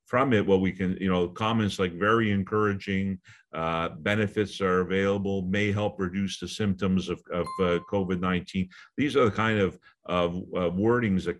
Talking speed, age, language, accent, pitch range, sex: 180 wpm, 50-69, English, American, 90-105 Hz, male